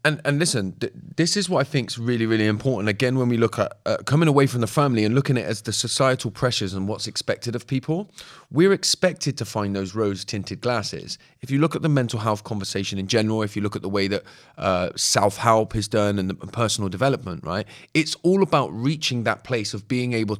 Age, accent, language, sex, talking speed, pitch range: 30-49, British, English, male, 235 wpm, 110-145 Hz